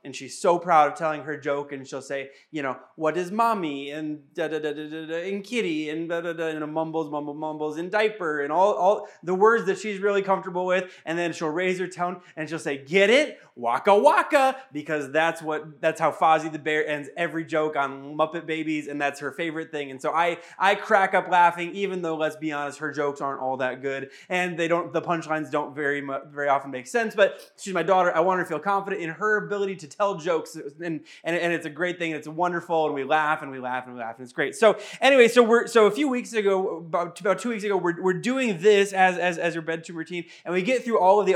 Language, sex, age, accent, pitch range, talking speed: English, male, 20-39, American, 150-185 Hz, 255 wpm